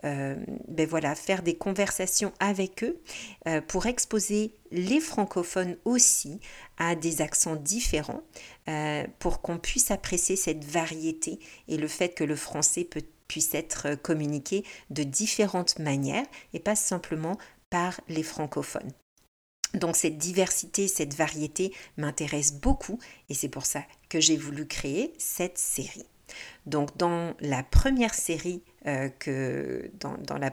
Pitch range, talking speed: 150-185 Hz, 135 wpm